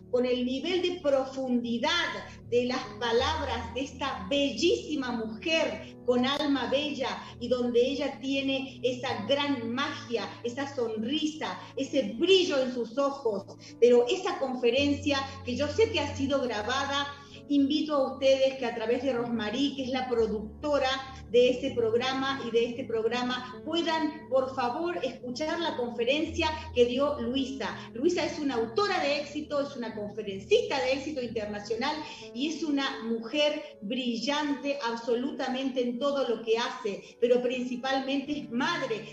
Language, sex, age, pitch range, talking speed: Spanish, female, 40-59, 240-290 Hz, 145 wpm